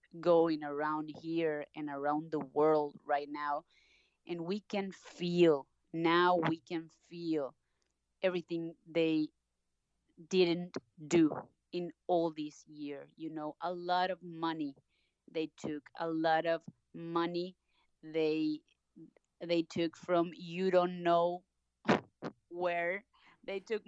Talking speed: 120 wpm